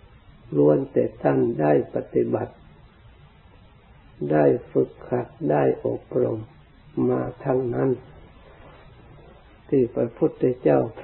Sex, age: male, 60-79